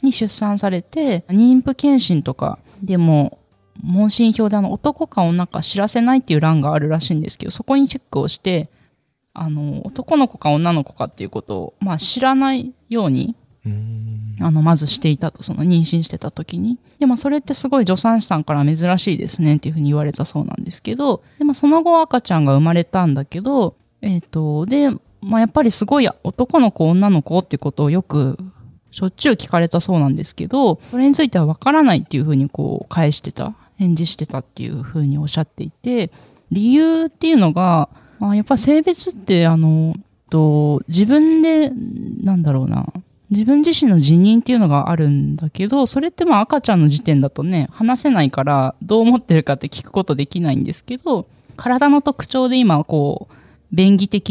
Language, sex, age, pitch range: Japanese, female, 20-39, 150-240 Hz